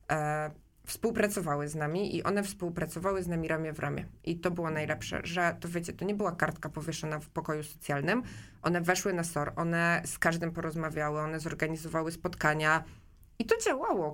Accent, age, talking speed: native, 20-39, 170 wpm